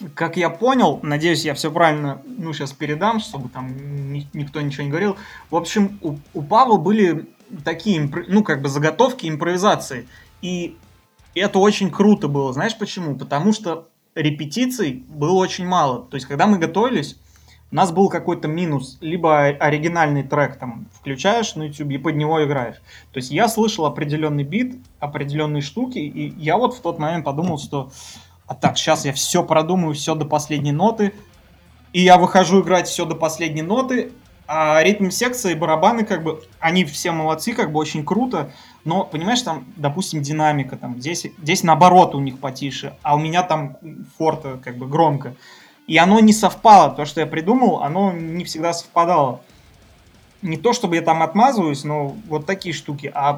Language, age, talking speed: Russian, 20-39, 170 wpm